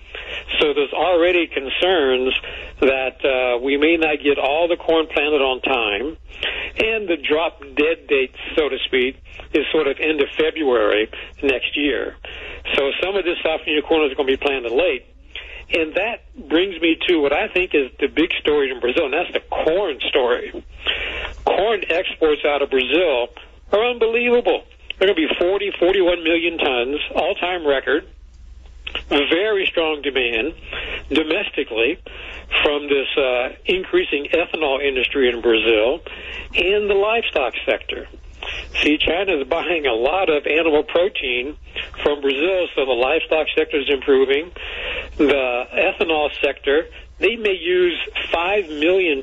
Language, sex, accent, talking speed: English, male, American, 150 wpm